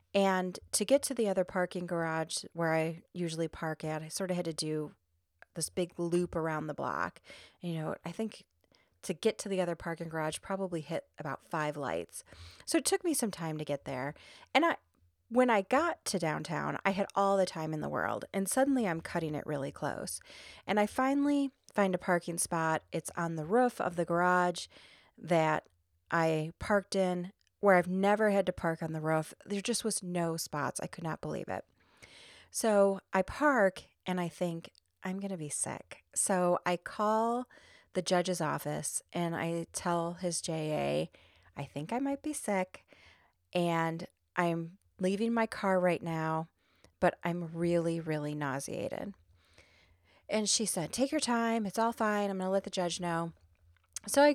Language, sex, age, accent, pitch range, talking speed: English, female, 30-49, American, 160-200 Hz, 185 wpm